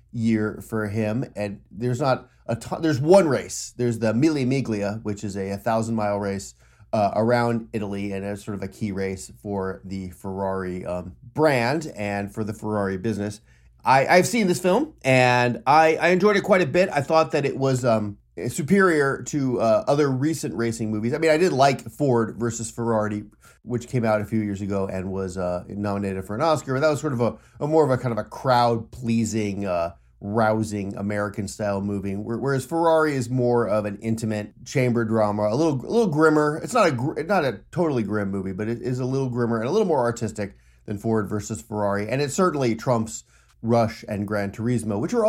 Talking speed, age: 210 wpm, 30-49